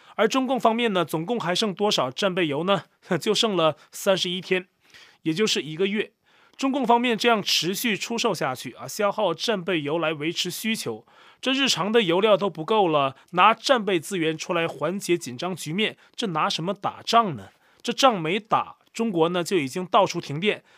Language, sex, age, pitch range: Chinese, male, 30-49, 175-225 Hz